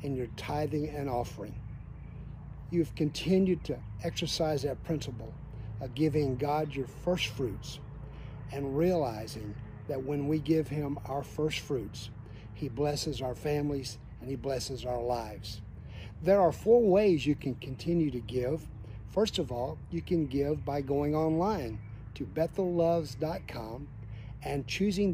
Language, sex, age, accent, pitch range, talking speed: English, male, 50-69, American, 120-160 Hz, 140 wpm